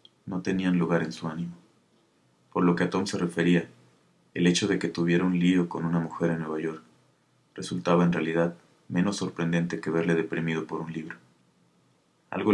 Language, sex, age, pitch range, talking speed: Spanish, male, 30-49, 85-90 Hz, 180 wpm